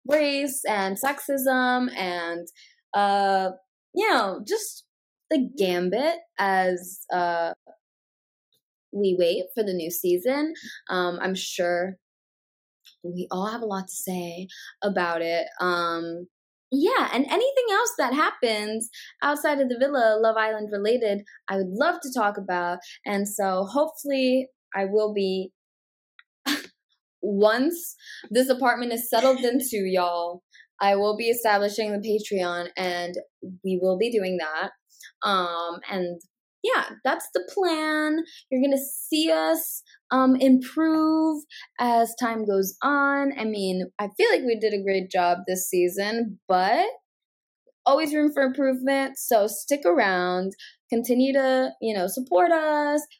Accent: American